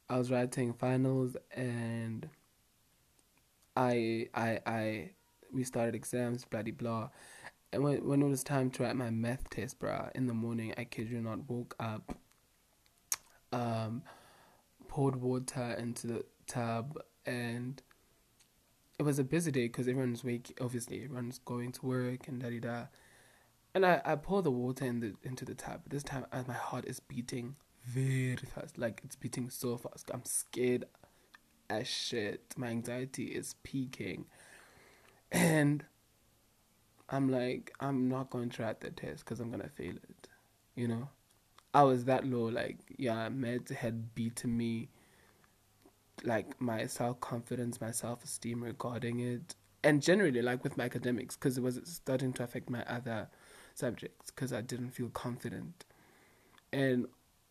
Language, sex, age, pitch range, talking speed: English, male, 20-39, 115-130 Hz, 150 wpm